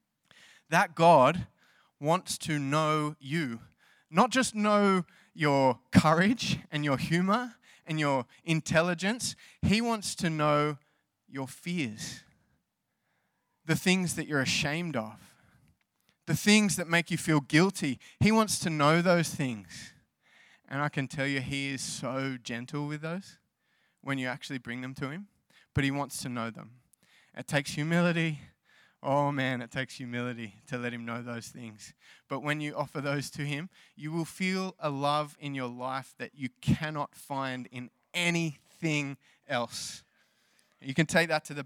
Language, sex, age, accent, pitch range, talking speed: English, male, 20-39, Australian, 130-165 Hz, 155 wpm